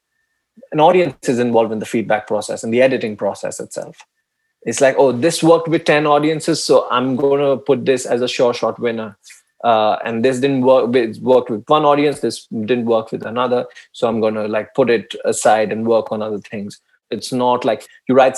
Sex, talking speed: male, 205 wpm